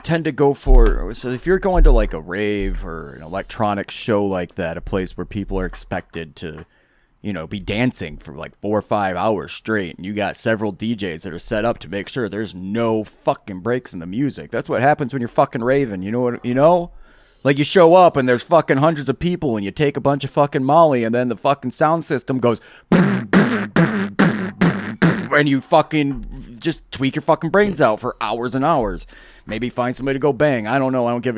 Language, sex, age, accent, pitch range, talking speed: English, male, 30-49, American, 105-150 Hz, 225 wpm